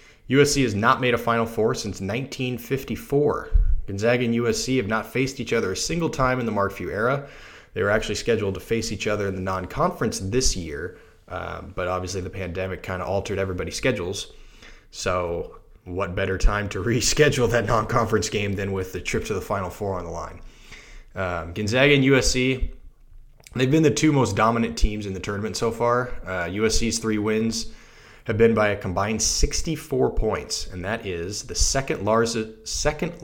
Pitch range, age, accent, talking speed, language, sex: 95-120 Hz, 20-39, American, 185 wpm, English, male